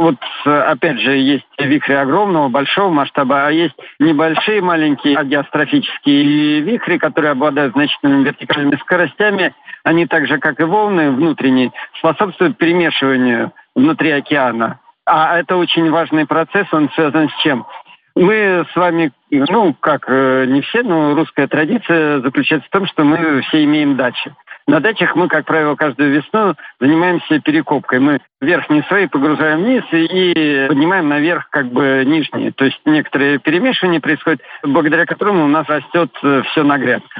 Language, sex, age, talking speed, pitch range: Russian, male, 50-69, 140 wpm, 145-180 Hz